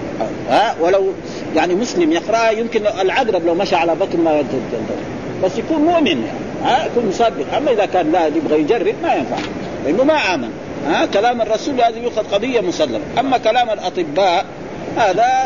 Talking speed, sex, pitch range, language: 155 wpm, male, 185-300 Hz, Arabic